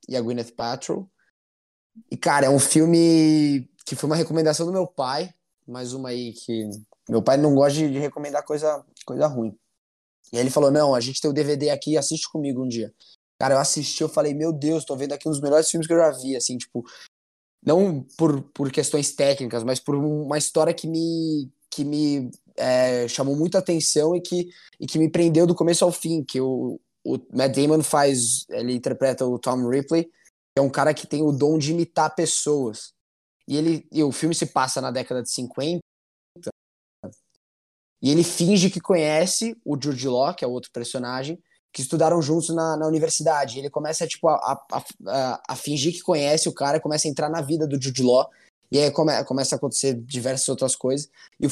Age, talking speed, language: 20-39, 205 wpm, Portuguese